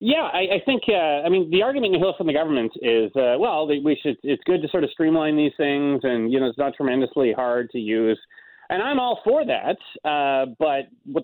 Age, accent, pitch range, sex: 30-49, American, 140-235 Hz, male